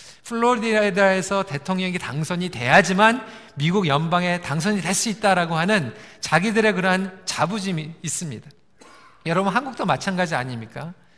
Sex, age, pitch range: male, 40-59, 160-220 Hz